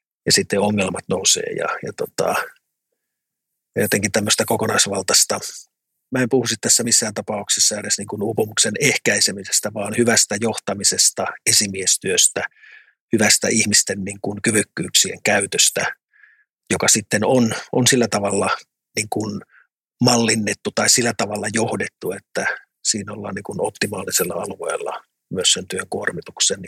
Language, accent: Finnish, native